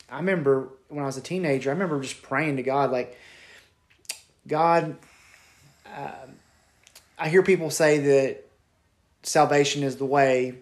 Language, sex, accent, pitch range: English, male, American, 135-160 Hz